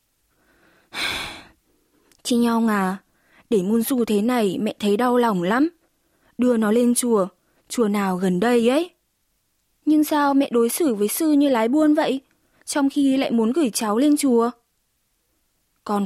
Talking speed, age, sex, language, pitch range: 155 wpm, 20-39, female, Vietnamese, 210-280 Hz